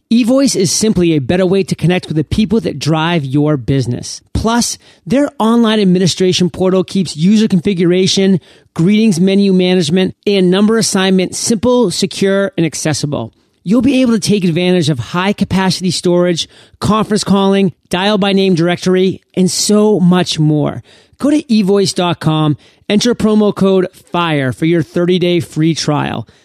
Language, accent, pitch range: English, American, 160-210 Hz